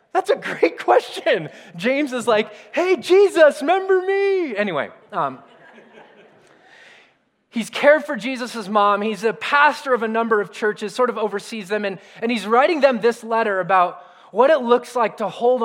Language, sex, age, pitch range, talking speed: English, male, 20-39, 195-250 Hz, 170 wpm